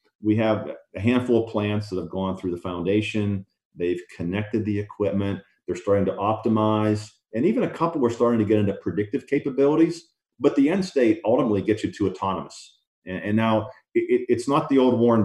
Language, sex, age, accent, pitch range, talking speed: English, male, 40-59, American, 95-120 Hz, 195 wpm